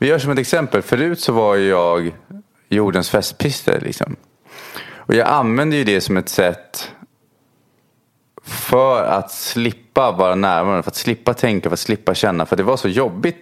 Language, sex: English, male